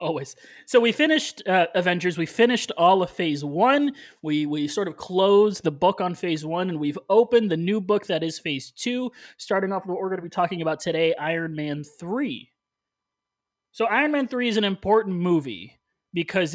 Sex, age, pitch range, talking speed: male, 30-49, 155-210 Hz, 200 wpm